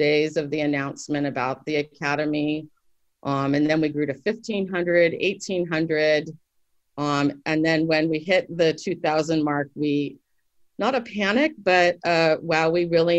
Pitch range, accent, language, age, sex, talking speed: 140-165 Hz, American, English, 40-59, female, 150 wpm